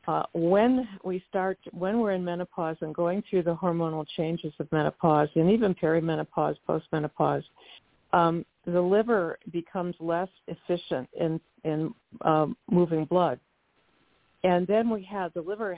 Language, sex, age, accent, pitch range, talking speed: English, female, 50-69, American, 155-185 Hz, 140 wpm